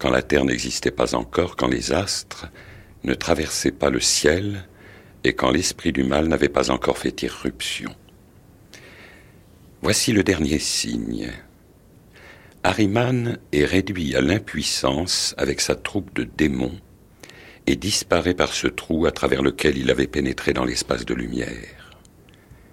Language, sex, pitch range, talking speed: French, male, 70-95 Hz, 140 wpm